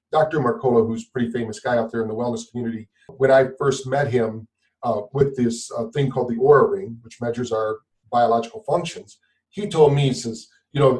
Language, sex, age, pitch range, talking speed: English, male, 40-59, 120-145 Hz, 215 wpm